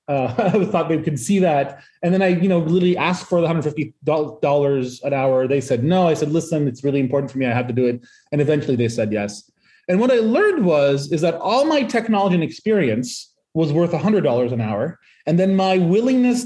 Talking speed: 230 wpm